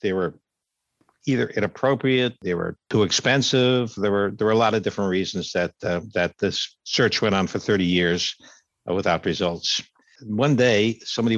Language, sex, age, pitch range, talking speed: English, male, 60-79, 95-115 Hz, 175 wpm